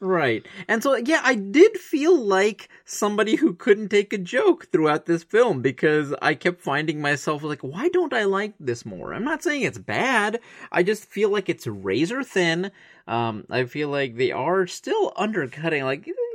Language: English